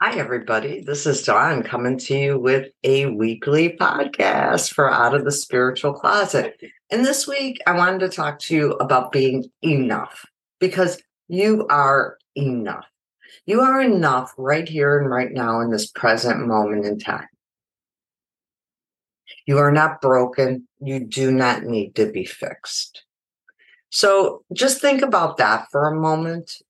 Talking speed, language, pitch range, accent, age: 150 wpm, English, 130-175 Hz, American, 50-69